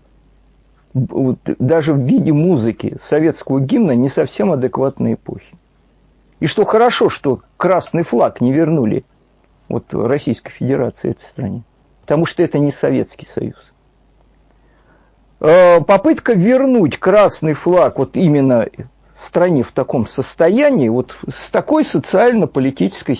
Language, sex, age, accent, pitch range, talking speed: Russian, male, 50-69, native, 135-195 Hz, 110 wpm